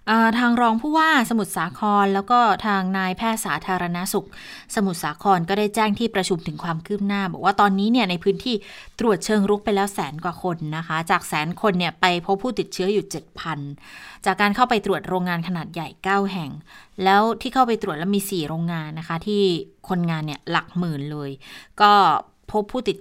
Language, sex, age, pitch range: Thai, female, 20-39, 170-205 Hz